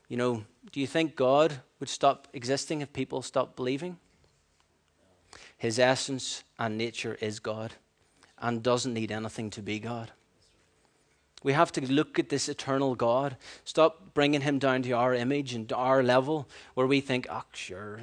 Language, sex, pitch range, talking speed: English, male, 110-140 Hz, 165 wpm